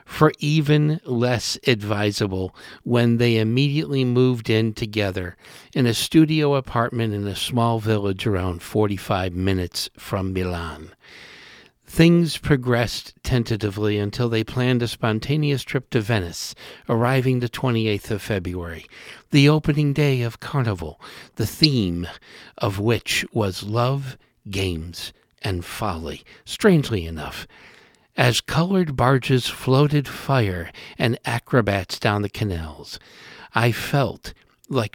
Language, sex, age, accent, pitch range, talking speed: English, male, 60-79, American, 100-130 Hz, 115 wpm